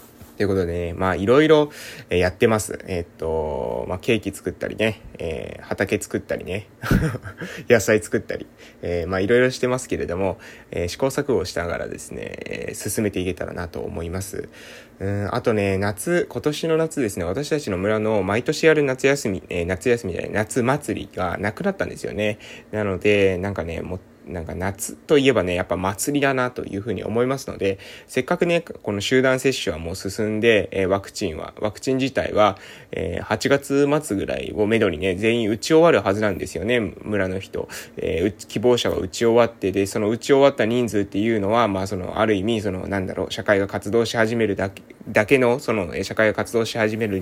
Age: 20-39